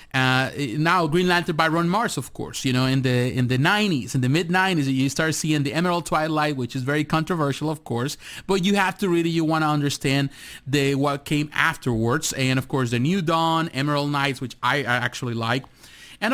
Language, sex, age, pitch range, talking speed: English, male, 30-49, 130-175 Hz, 210 wpm